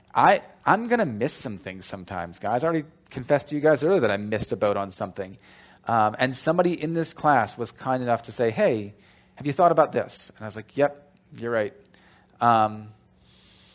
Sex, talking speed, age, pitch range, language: male, 205 wpm, 30-49, 115-155 Hz, English